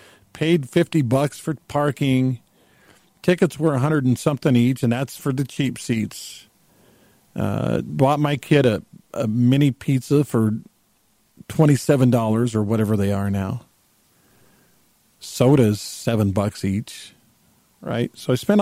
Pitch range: 110-155 Hz